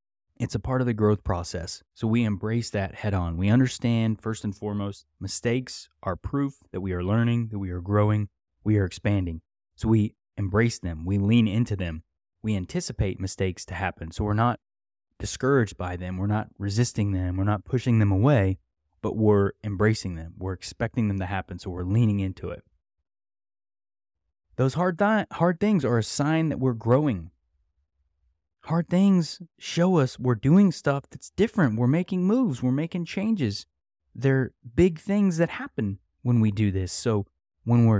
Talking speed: 175 wpm